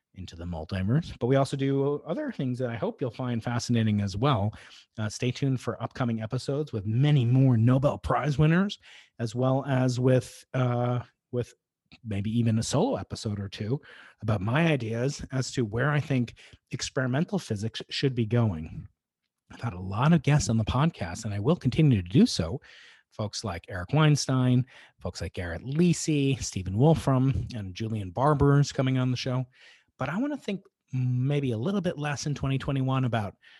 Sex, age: male, 30-49